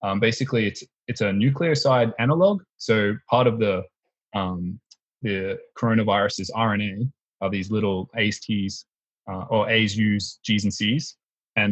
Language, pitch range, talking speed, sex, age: English, 100-115 Hz, 145 wpm, male, 20-39